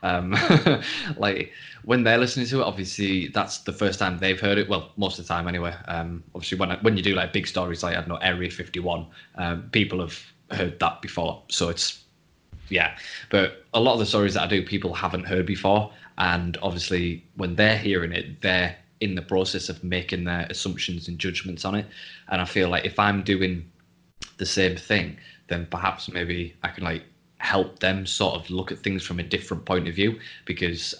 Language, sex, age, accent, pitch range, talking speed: English, male, 20-39, British, 85-100 Hz, 205 wpm